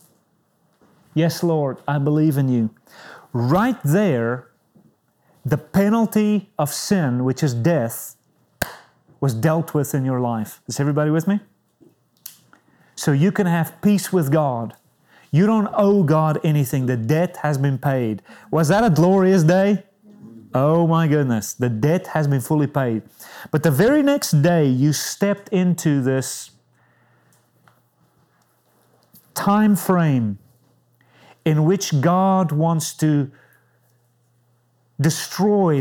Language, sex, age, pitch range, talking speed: English, male, 30-49, 130-185 Hz, 120 wpm